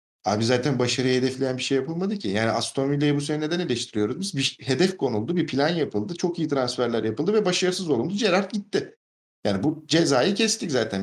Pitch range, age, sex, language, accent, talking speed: 115-160 Hz, 50-69, male, Turkish, native, 195 wpm